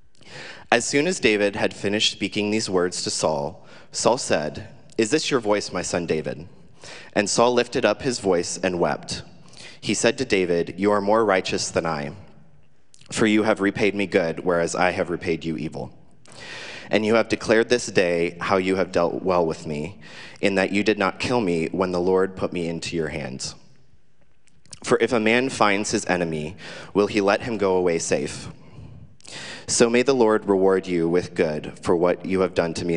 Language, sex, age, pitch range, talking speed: English, male, 30-49, 85-105 Hz, 195 wpm